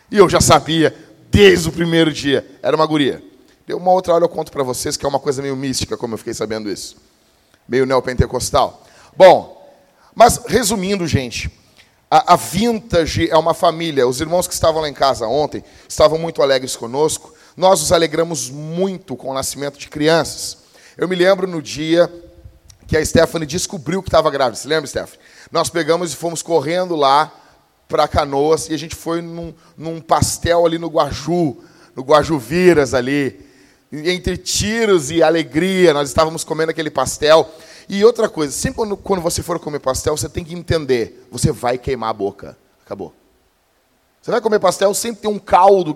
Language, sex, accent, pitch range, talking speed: Portuguese, male, Brazilian, 145-175 Hz, 180 wpm